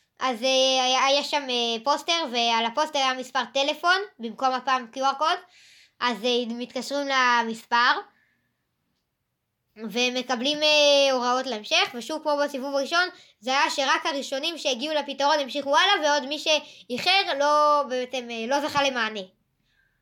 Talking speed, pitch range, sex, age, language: 110 wpm, 250-310 Hz, male, 20-39, Hebrew